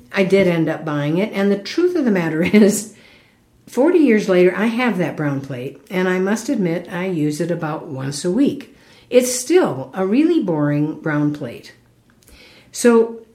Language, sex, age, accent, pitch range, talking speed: English, female, 60-79, American, 155-235 Hz, 180 wpm